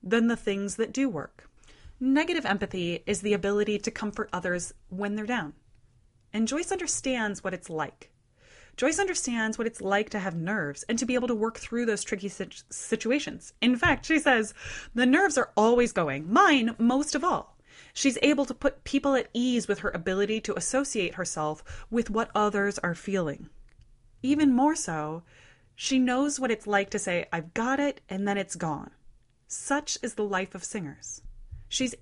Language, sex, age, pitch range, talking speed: English, female, 30-49, 185-265 Hz, 180 wpm